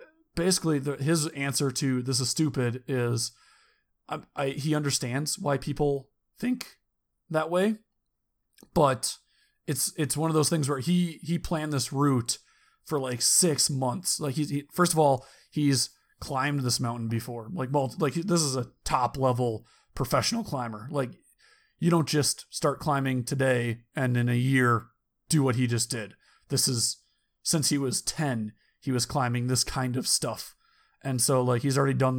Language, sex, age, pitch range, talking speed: English, male, 30-49, 125-150 Hz, 170 wpm